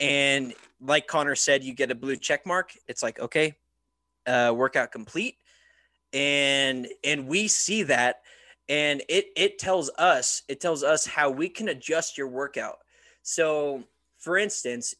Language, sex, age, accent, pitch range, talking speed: English, male, 20-39, American, 130-165 Hz, 150 wpm